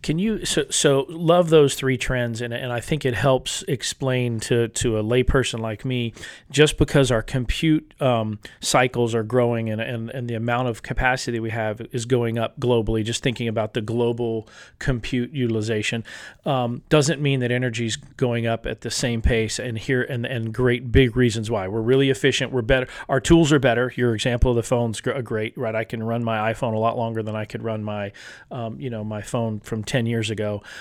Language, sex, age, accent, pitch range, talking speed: English, male, 40-59, American, 110-130 Hz, 210 wpm